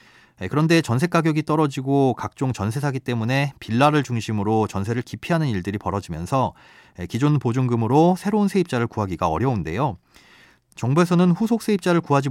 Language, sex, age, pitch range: Korean, male, 30-49, 105-150 Hz